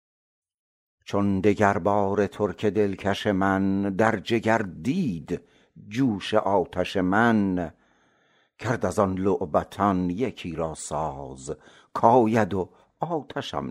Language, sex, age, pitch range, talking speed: Persian, male, 60-79, 90-115 Hz, 95 wpm